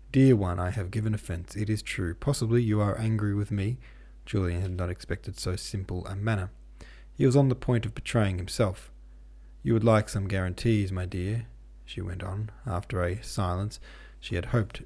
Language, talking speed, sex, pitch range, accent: English, 190 wpm, male, 90-115 Hz, Australian